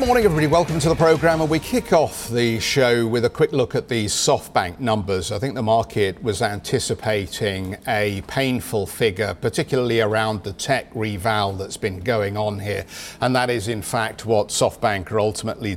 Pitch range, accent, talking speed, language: 100-125 Hz, British, 185 wpm, English